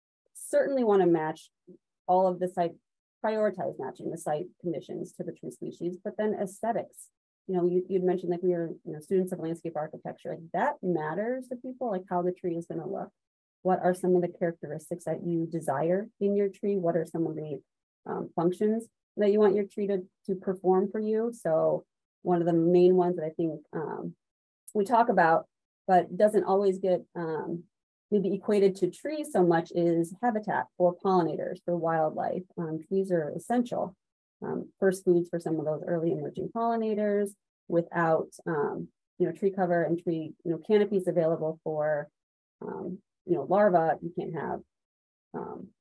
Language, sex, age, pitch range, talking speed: English, female, 30-49, 170-195 Hz, 185 wpm